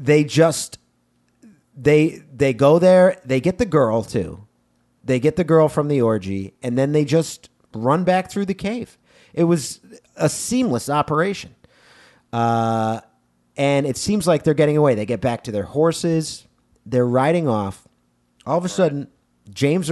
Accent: American